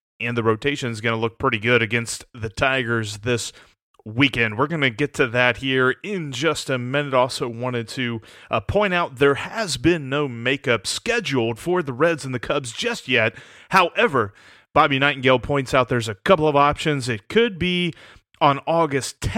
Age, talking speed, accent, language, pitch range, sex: 30-49, 185 wpm, American, English, 120-155 Hz, male